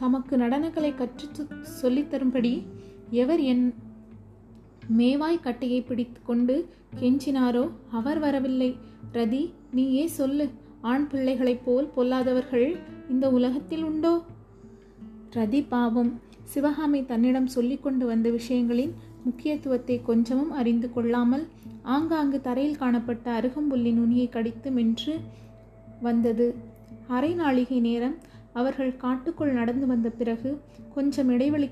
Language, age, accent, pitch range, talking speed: Tamil, 30-49, native, 240-275 Hz, 100 wpm